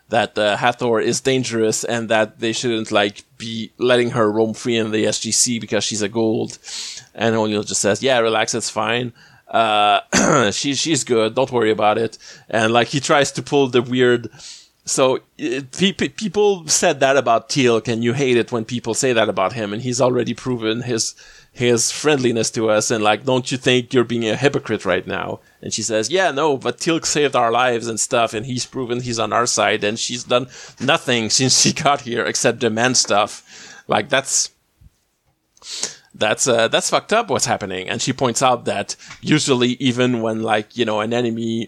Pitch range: 110-125 Hz